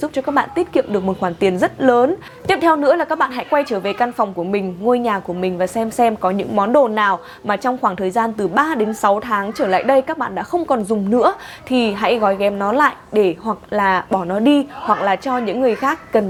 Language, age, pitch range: Vietnamese, 20-39, 205-275 Hz